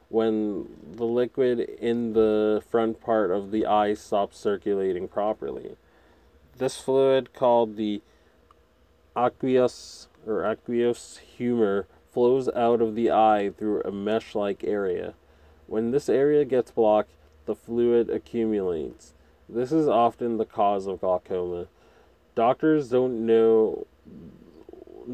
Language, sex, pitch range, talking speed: English, male, 100-120 Hz, 115 wpm